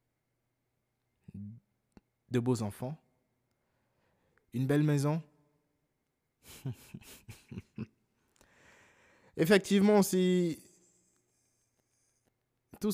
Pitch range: 115-140 Hz